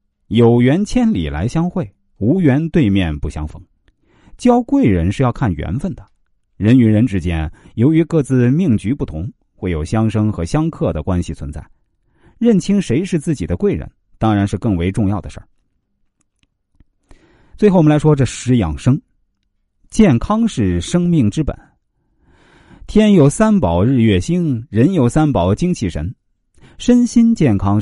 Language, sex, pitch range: Chinese, male, 90-150 Hz